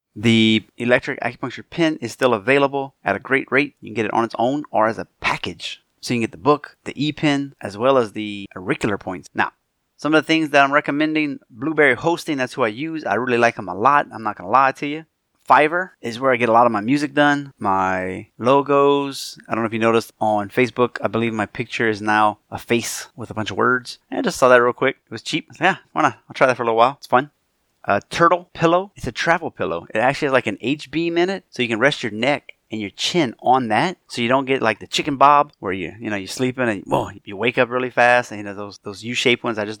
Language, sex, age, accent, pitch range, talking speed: English, male, 20-39, American, 110-140 Hz, 265 wpm